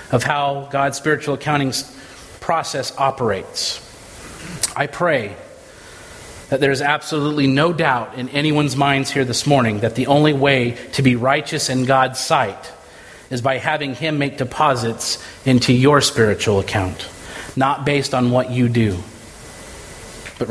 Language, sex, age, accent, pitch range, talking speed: English, male, 30-49, American, 115-145 Hz, 140 wpm